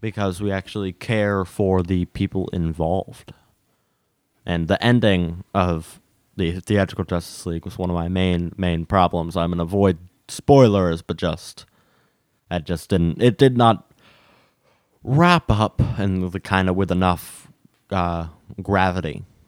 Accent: American